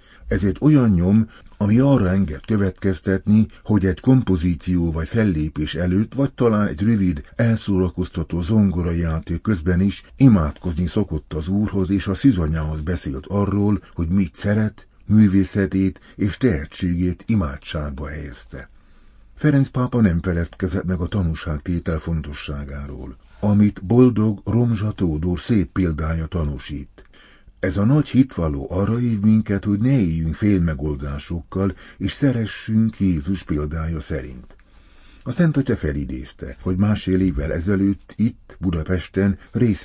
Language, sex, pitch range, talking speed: Hungarian, male, 80-105 Hz, 120 wpm